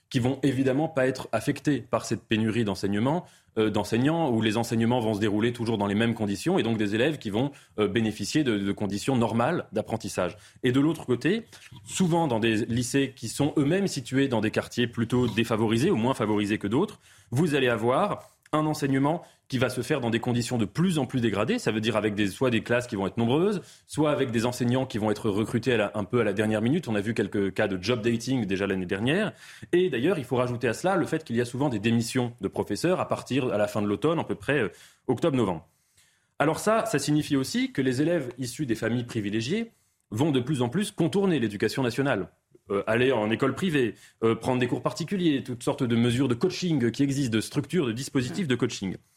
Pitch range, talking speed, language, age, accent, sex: 110-145 Hz, 225 wpm, French, 30-49, French, male